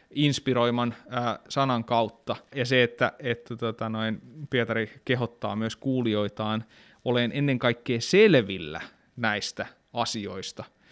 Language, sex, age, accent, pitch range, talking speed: Finnish, male, 20-39, native, 115-135 Hz, 100 wpm